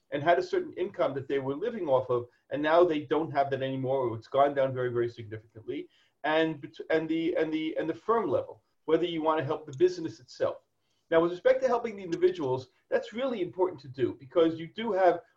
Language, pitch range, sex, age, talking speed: English, 140-210 Hz, male, 40-59, 225 wpm